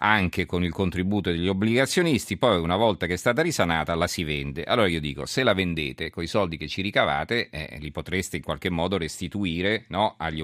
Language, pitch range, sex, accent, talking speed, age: Italian, 80-105 Hz, male, native, 205 wpm, 40-59